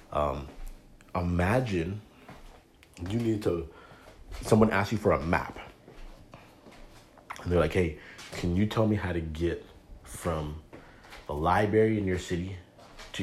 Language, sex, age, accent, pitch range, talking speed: English, male, 30-49, American, 80-100 Hz, 130 wpm